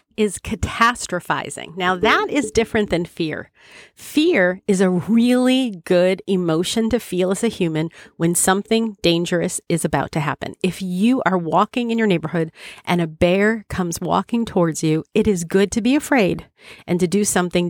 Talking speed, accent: 170 wpm, American